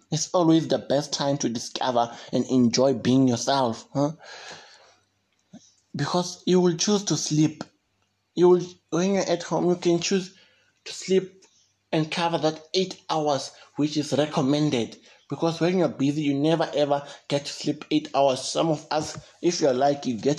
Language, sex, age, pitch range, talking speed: English, male, 60-79, 130-170 Hz, 170 wpm